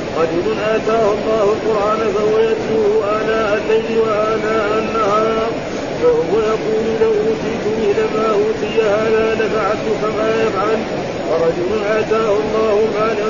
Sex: male